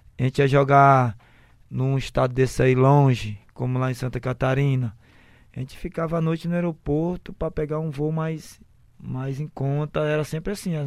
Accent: Brazilian